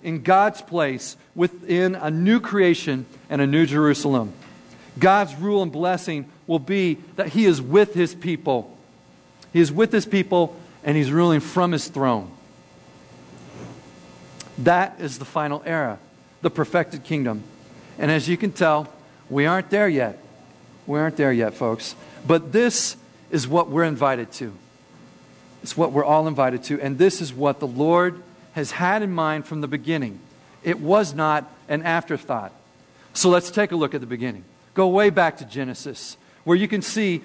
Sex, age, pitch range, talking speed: male, 50-69, 140-180 Hz, 170 wpm